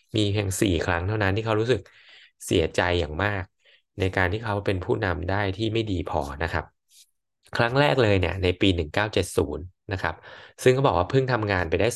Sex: male